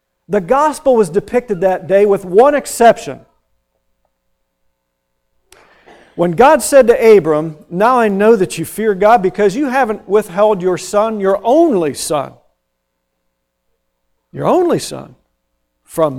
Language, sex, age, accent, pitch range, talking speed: English, male, 50-69, American, 160-235 Hz, 125 wpm